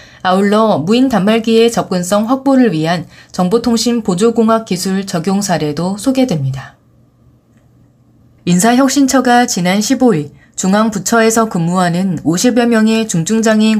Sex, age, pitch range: female, 20-39, 170-230 Hz